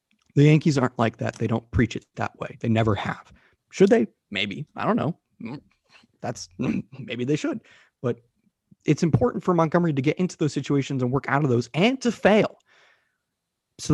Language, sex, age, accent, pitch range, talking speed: English, male, 30-49, American, 120-160 Hz, 185 wpm